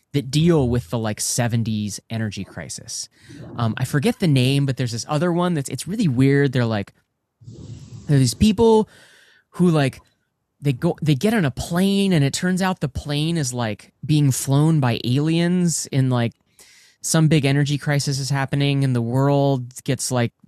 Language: English